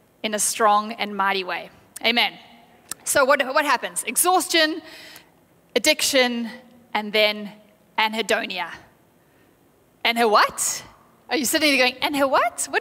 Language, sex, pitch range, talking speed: English, female, 225-295 Hz, 130 wpm